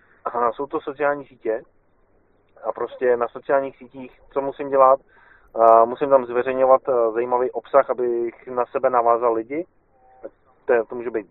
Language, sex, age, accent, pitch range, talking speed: Czech, male, 30-49, native, 120-140 Hz, 145 wpm